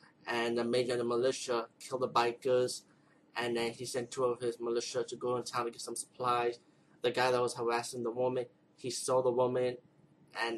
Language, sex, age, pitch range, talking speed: English, male, 20-39, 120-125 Hz, 210 wpm